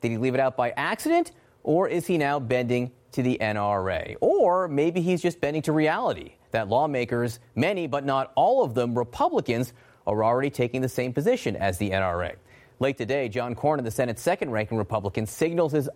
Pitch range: 120-160 Hz